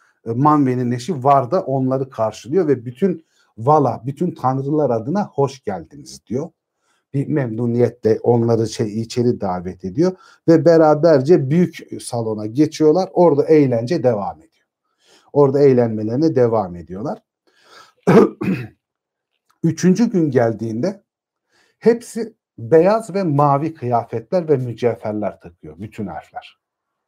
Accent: native